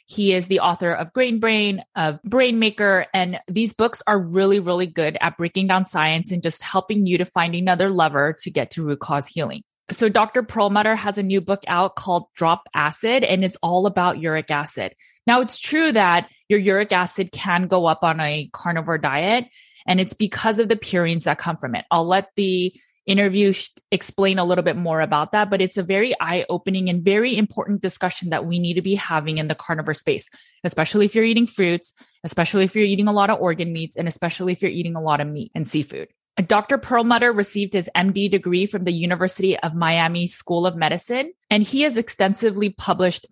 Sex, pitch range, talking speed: female, 170-205 Hz, 210 wpm